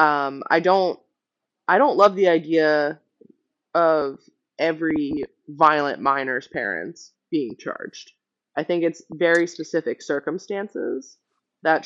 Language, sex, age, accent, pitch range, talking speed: English, female, 20-39, American, 145-175 Hz, 110 wpm